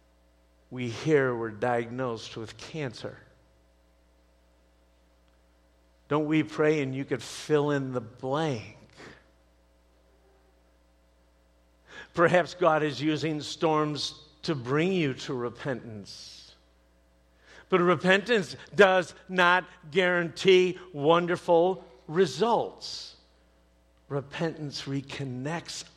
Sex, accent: male, American